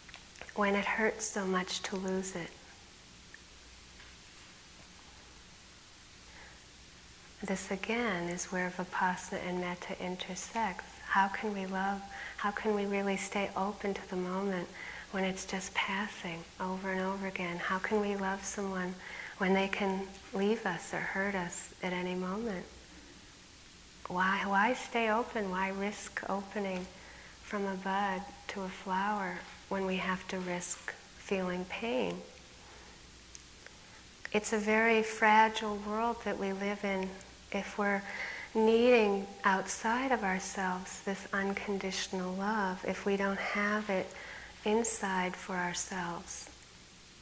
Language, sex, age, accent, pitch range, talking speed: English, female, 40-59, American, 185-205 Hz, 125 wpm